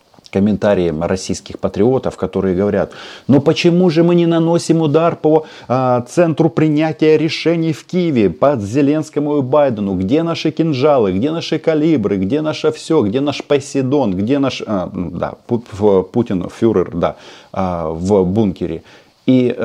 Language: Russian